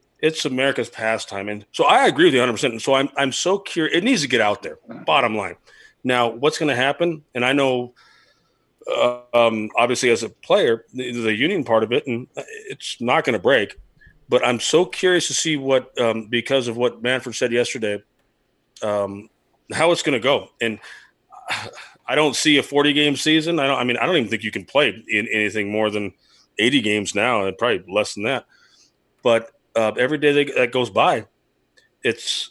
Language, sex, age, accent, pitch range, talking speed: English, male, 30-49, American, 115-150 Hz, 205 wpm